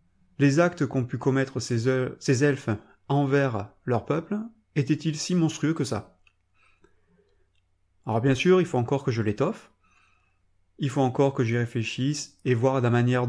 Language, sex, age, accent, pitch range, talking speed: French, male, 30-49, French, 115-150 Hz, 155 wpm